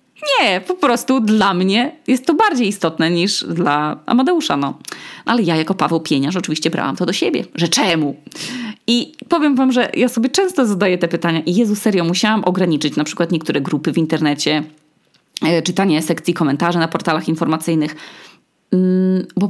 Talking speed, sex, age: 165 wpm, female, 20-39